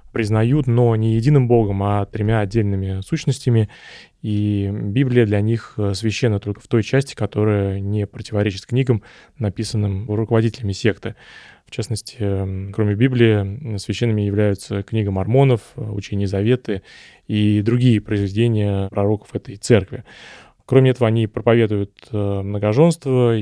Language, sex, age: Russian, male, 20-39